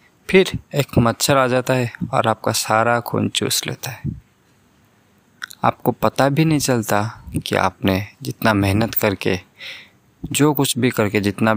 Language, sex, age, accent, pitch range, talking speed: Hindi, male, 20-39, native, 105-130 Hz, 145 wpm